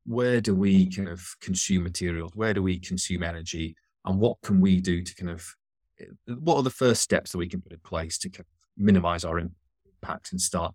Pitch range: 85-100 Hz